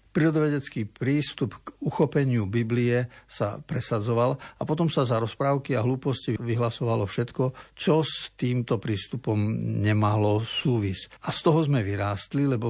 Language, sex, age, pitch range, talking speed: Slovak, male, 60-79, 110-135 Hz, 130 wpm